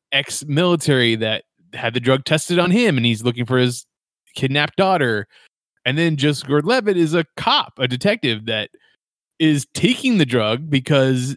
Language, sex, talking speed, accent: English, male, 170 wpm, American